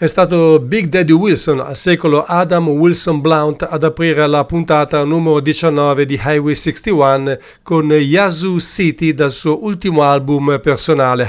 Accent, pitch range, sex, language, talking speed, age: Italian, 145-175 Hz, male, English, 145 wpm, 50-69